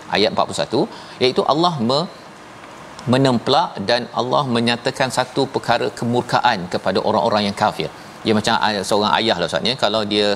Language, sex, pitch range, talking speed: Malayalam, male, 115-145 Hz, 140 wpm